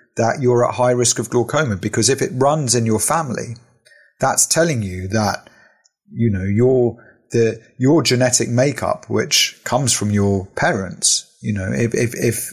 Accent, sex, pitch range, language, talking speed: British, male, 105-125 Hz, English, 170 wpm